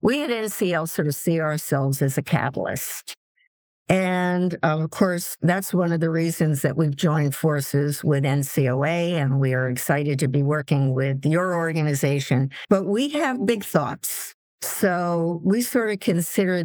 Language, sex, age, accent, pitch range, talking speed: English, female, 60-79, American, 145-185 Hz, 160 wpm